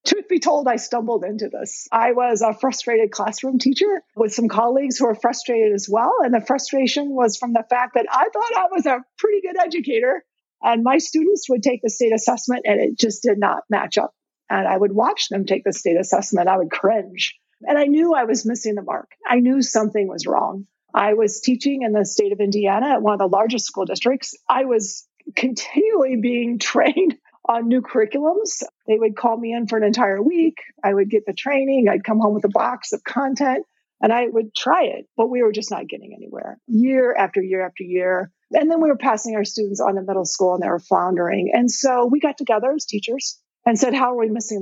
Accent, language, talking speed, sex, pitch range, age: American, English, 225 wpm, female, 215-270 Hz, 40-59